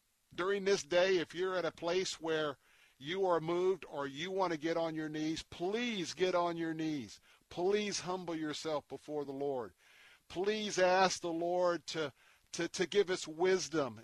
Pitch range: 130-180 Hz